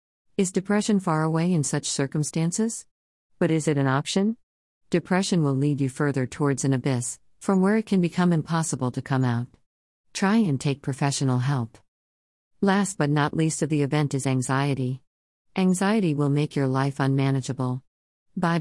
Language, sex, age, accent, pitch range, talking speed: English, female, 50-69, American, 130-165 Hz, 160 wpm